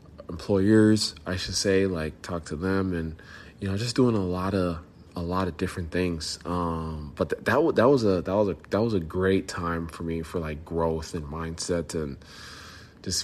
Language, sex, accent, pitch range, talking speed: English, male, American, 80-95 Hz, 210 wpm